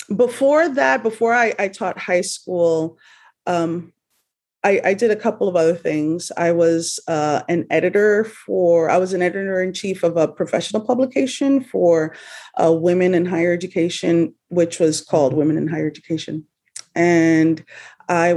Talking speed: 155 wpm